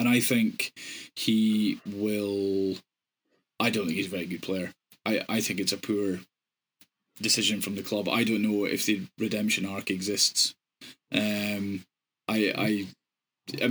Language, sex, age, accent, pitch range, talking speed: English, male, 20-39, British, 105-130 Hz, 155 wpm